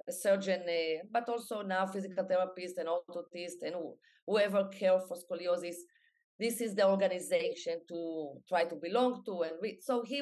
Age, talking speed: 30-49, 170 wpm